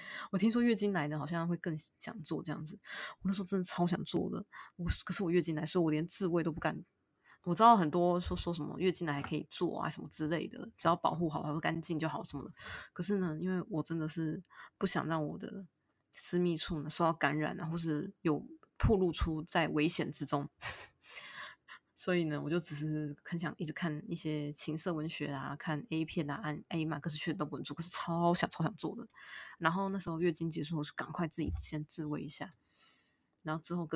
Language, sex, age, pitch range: Chinese, female, 20-39, 155-185 Hz